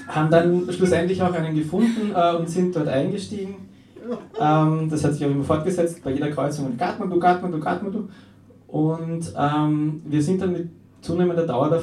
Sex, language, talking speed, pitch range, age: male, German, 170 wpm, 135-165 Hz, 20-39